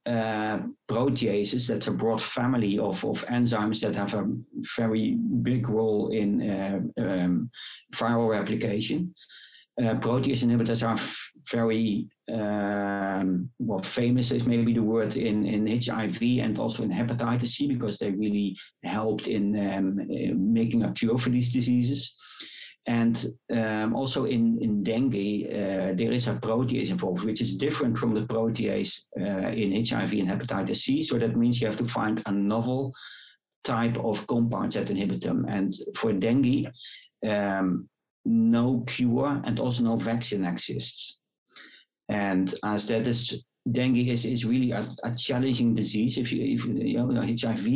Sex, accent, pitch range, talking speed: male, Dutch, 105-120 Hz, 150 wpm